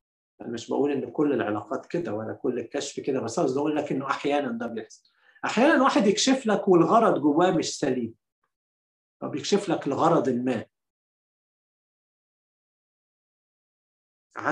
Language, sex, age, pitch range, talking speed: Arabic, male, 50-69, 130-185 Hz, 125 wpm